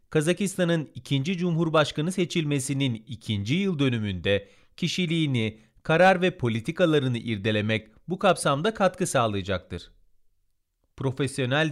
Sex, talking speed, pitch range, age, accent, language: male, 85 wpm, 110-165 Hz, 40-59, native, Turkish